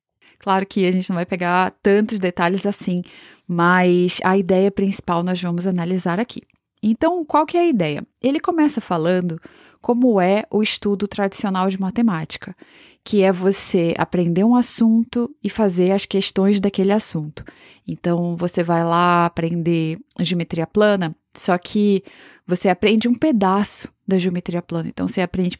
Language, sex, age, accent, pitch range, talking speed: Portuguese, female, 20-39, Brazilian, 185-240 Hz, 150 wpm